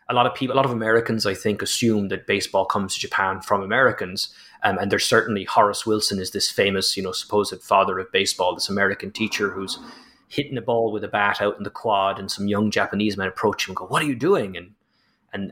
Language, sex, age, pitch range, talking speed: English, male, 30-49, 100-115 Hz, 240 wpm